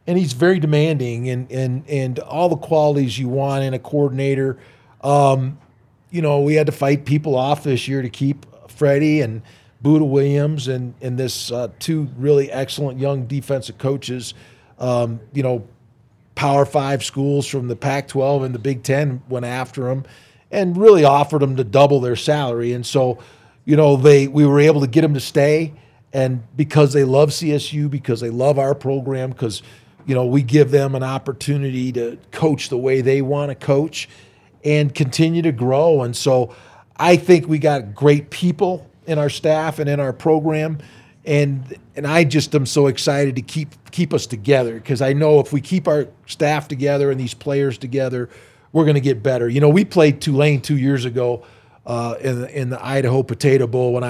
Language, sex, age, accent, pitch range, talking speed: English, male, 40-59, American, 125-145 Hz, 190 wpm